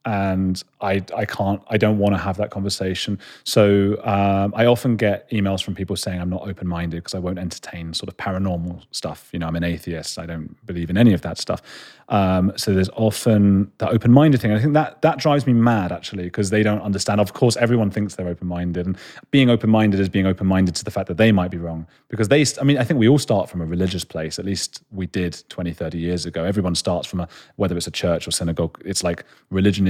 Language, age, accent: English, 30-49, British